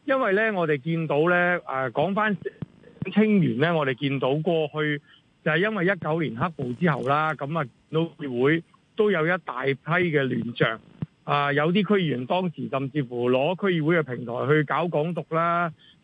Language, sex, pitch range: Chinese, male, 145-180 Hz